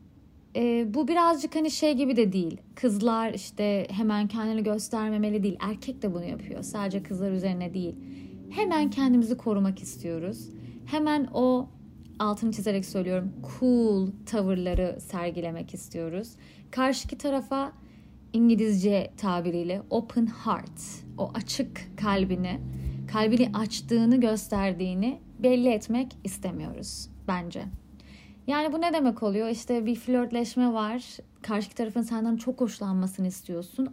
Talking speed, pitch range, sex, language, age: 115 wpm, 195-255 Hz, female, Turkish, 30-49